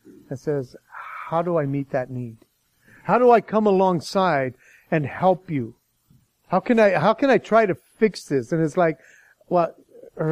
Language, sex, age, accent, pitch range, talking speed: English, male, 40-59, American, 160-225 Hz, 170 wpm